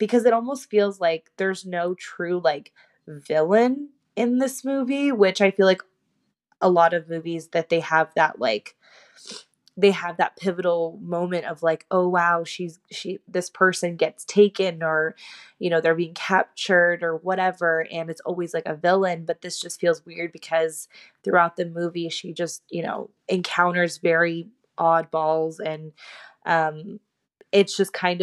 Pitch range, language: 170-195 Hz, English